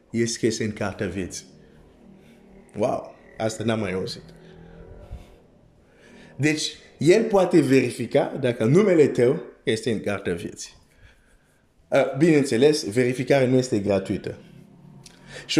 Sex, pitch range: male, 115-150 Hz